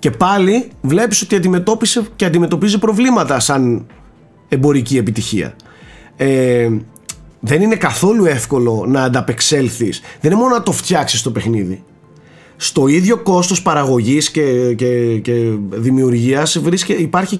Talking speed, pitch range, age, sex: 125 wpm, 130-190 Hz, 30-49, male